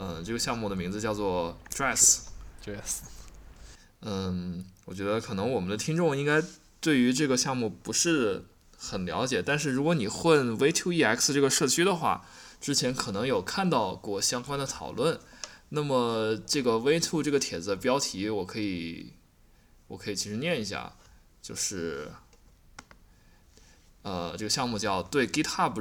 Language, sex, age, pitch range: Chinese, male, 20-39, 95-145 Hz